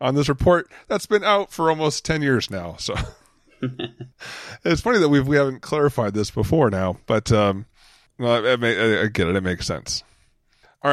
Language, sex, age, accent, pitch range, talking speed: English, male, 30-49, American, 105-135 Hz, 190 wpm